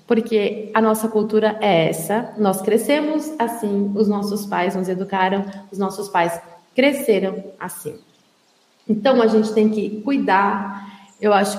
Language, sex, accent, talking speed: Portuguese, female, Brazilian, 140 wpm